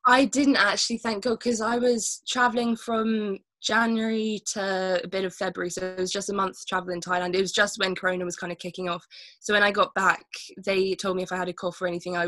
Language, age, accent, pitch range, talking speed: English, 10-29, British, 175-195 Hz, 250 wpm